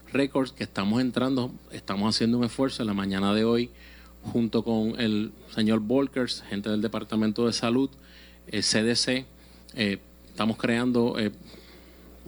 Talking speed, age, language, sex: 135 wpm, 30-49, Spanish, male